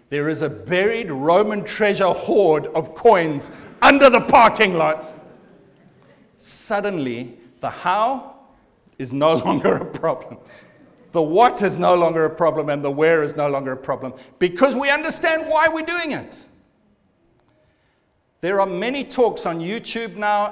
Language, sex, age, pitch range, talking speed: English, male, 60-79, 175-265 Hz, 145 wpm